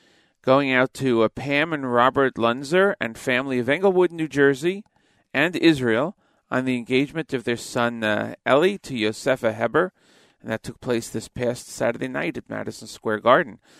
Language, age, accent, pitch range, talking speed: English, 40-59, American, 115-140 Hz, 170 wpm